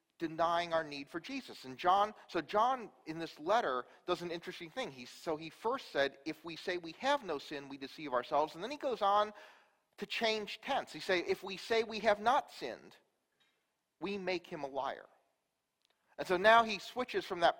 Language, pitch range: English, 155-225 Hz